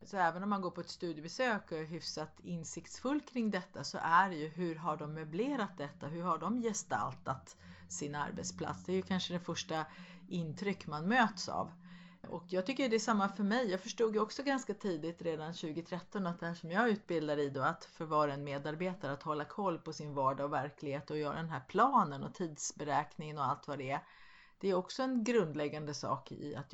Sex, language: female, Swedish